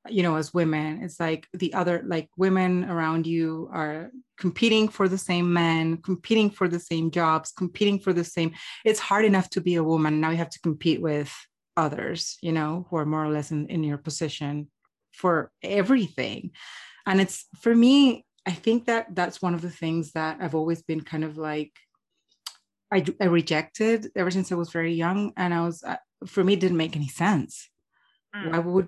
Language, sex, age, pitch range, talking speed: English, female, 30-49, 160-190 Hz, 195 wpm